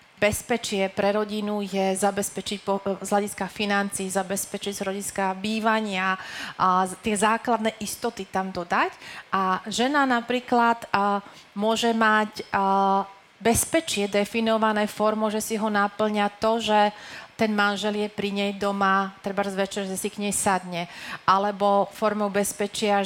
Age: 30-49